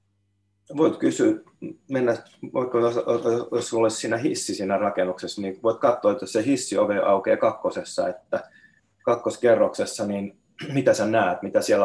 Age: 30-49